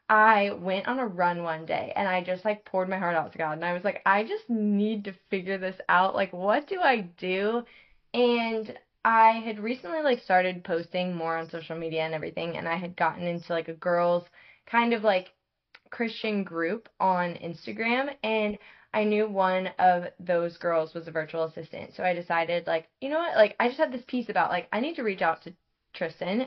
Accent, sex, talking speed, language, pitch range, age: American, female, 215 wpm, English, 175-210 Hz, 10-29